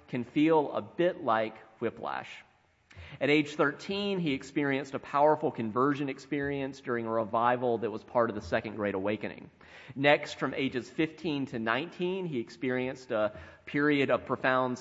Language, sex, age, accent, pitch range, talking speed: English, male, 30-49, American, 100-135 Hz, 155 wpm